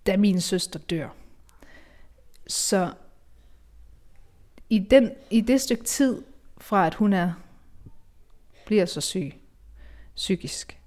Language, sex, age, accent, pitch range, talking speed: Danish, female, 30-49, native, 155-220 Hz, 90 wpm